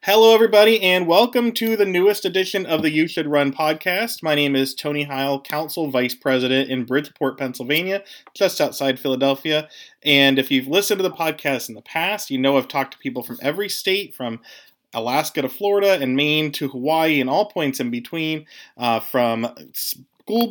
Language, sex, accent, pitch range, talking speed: English, male, American, 130-180 Hz, 185 wpm